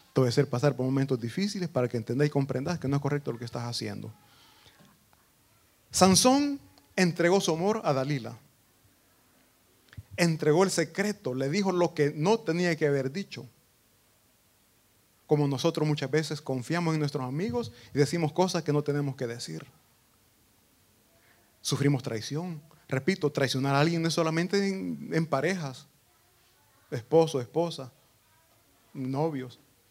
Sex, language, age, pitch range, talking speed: male, Italian, 30-49, 120-170 Hz, 140 wpm